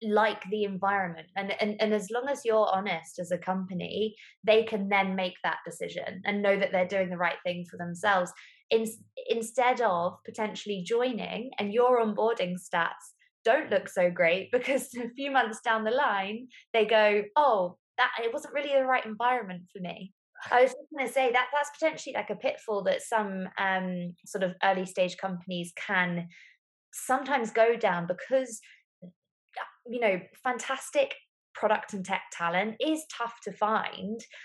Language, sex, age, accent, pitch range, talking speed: English, female, 20-39, British, 185-245 Hz, 165 wpm